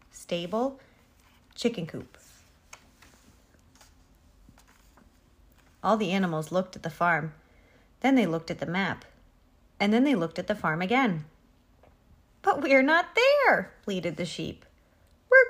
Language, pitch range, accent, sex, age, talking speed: English, 165-265 Hz, American, female, 30-49, 125 wpm